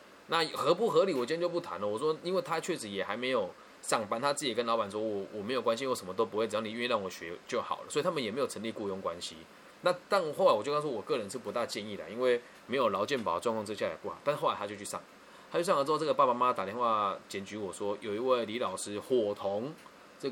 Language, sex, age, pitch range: Chinese, male, 20-39, 105-160 Hz